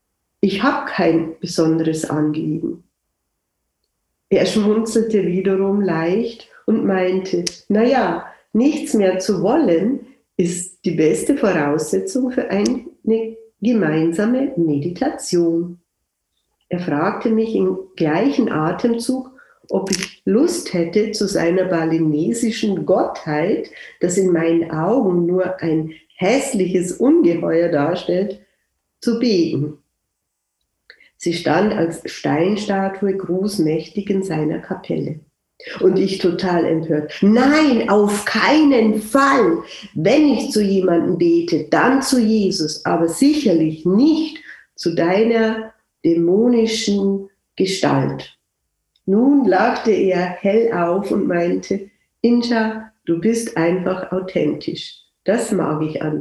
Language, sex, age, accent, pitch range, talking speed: German, female, 60-79, German, 170-225 Hz, 100 wpm